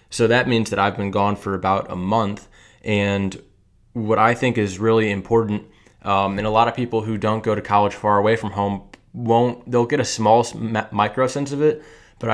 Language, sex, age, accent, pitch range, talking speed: English, male, 20-39, American, 100-115 Hz, 215 wpm